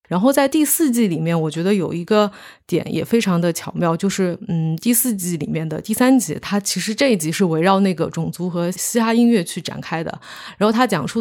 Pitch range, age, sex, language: 170-205 Hz, 20-39, female, Chinese